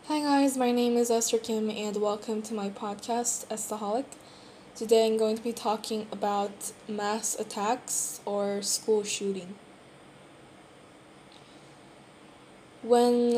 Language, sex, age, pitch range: Korean, female, 10-29, 205-235 Hz